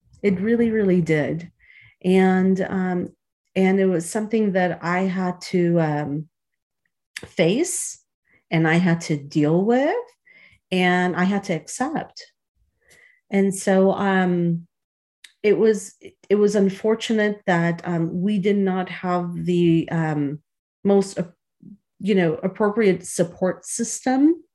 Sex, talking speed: female, 120 wpm